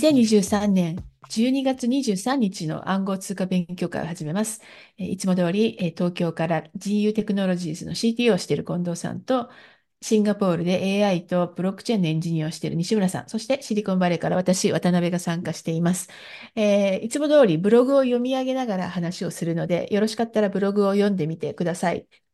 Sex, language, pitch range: female, Japanese, 180-225 Hz